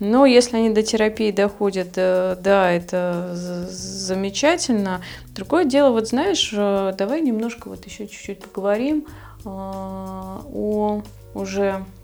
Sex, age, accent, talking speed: female, 20-39, native, 105 wpm